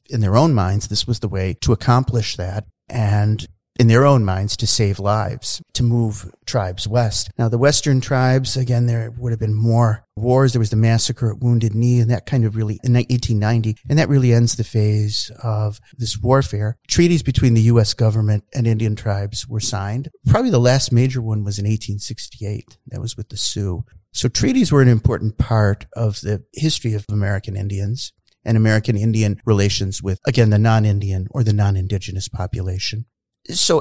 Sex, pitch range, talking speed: male, 105-125 Hz, 185 wpm